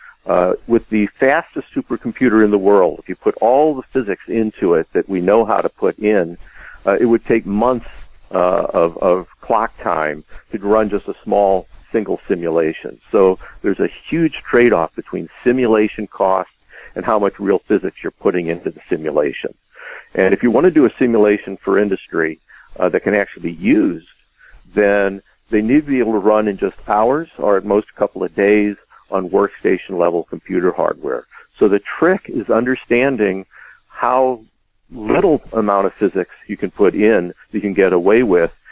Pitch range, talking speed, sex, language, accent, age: 95-110 Hz, 180 wpm, male, English, American, 50-69